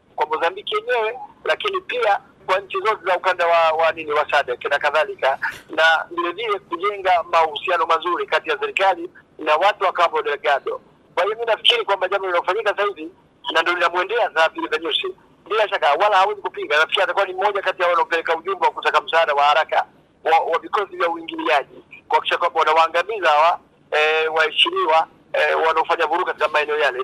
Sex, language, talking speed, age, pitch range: male, Swahili, 175 wpm, 50-69, 155-205 Hz